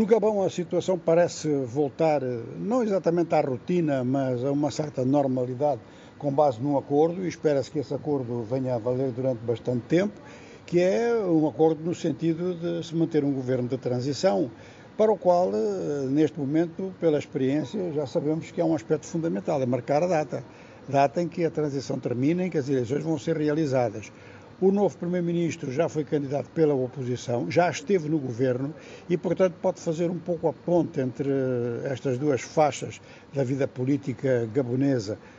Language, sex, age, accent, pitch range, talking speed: Portuguese, male, 60-79, Brazilian, 130-170 Hz, 175 wpm